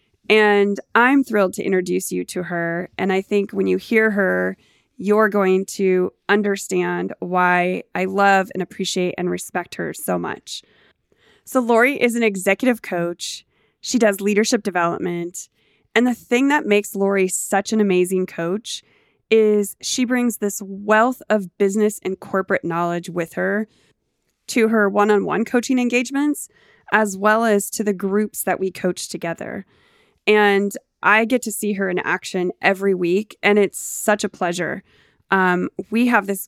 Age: 20-39